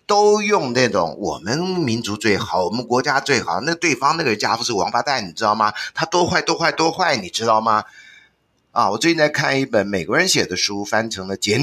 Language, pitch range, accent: Chinese, 105-145 Hz, native